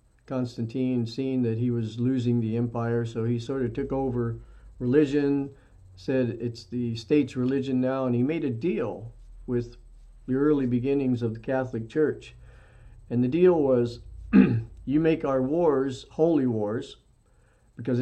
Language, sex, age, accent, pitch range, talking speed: English, male, 50-69, American, 115-130 Hz, 150 wpm